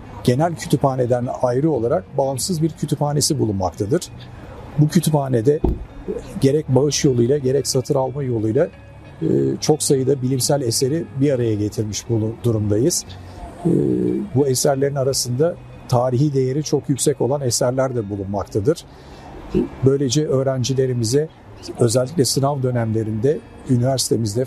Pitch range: 115-145 Hz